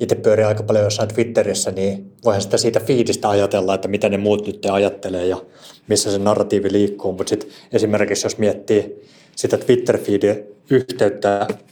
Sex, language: male, Finnish